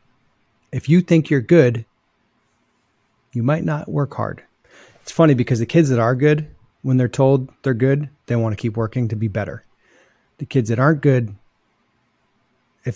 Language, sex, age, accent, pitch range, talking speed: English, male, 30-49, American, 110-135 Hz, 170 wpm